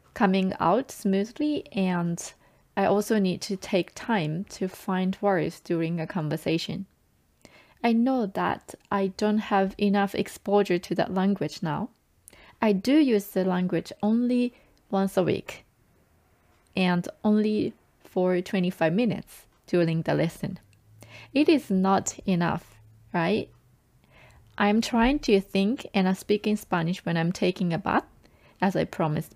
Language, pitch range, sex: Japanese, 180-220 Hz, female